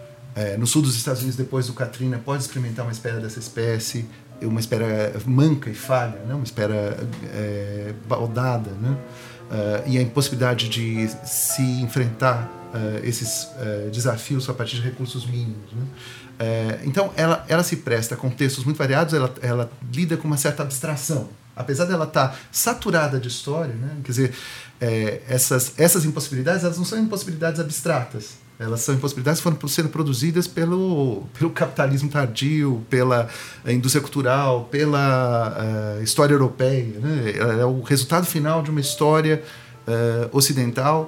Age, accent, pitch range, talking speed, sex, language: 40-59, Brazilian, 120-150 Hz, 155 wpm, male, Portuguese